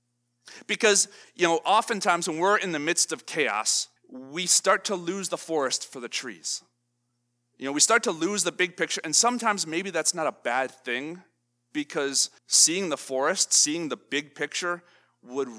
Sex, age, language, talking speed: male, 30-49, English, 175 wpm